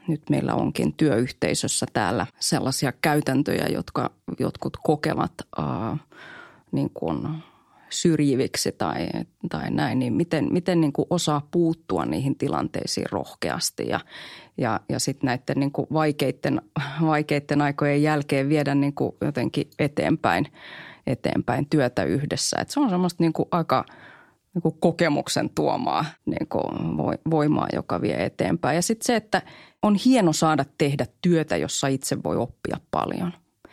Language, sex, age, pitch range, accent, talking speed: Finnish, female, 30-49, 140-160 Hz, native, 125 wpm